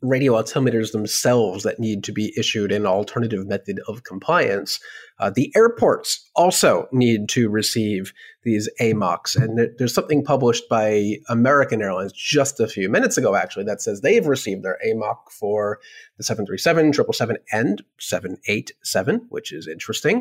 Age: 30-49